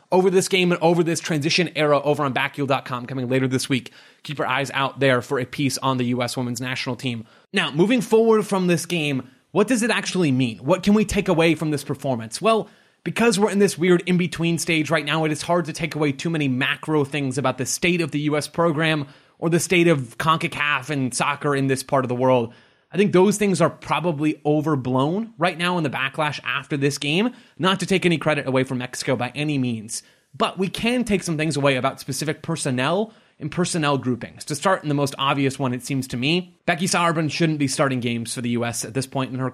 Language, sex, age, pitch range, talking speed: English, male, 30-49, 135-175 Hz, 230 wpm